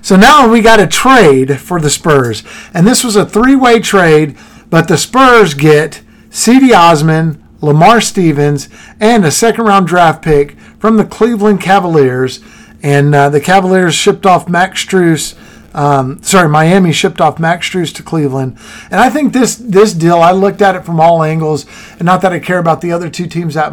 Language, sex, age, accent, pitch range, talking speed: English, male, 50-69, American, 145-195 Hz, 185 wpm